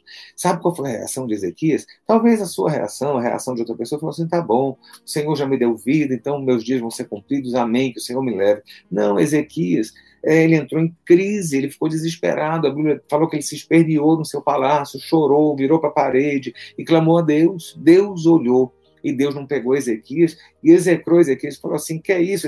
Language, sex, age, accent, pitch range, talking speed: Portuguese, male, 40-59, Brazilian, 125-165 Hz, 220 wpm